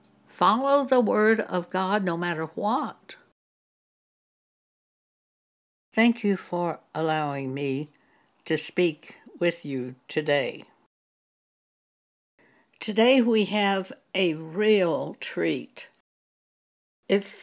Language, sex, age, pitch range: English, female, 60-79, 155-200 Hz